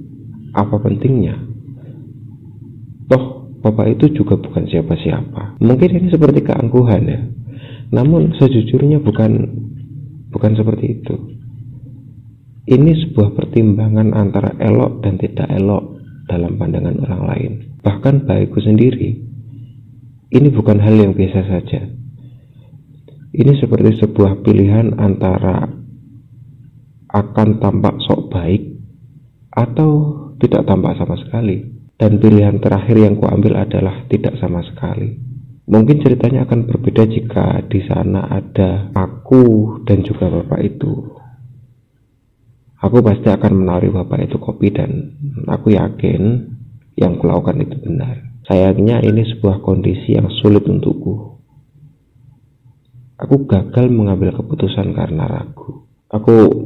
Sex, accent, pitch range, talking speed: male, native, 105-130 Hz, 110 wpm